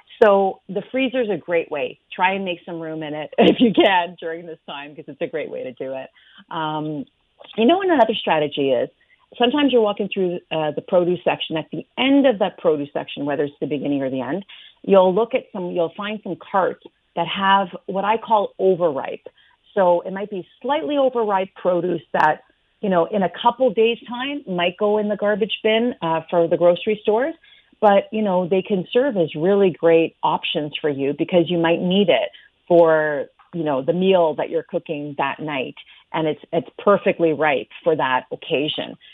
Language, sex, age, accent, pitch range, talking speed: English, female, 40-59, American, 160-215 Hz, 205 wpm